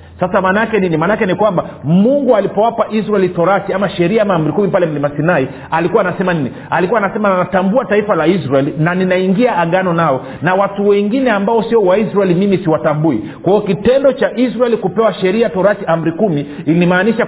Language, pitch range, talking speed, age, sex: Swahili, 175-225 Hz, 175 wpm, 40-59, male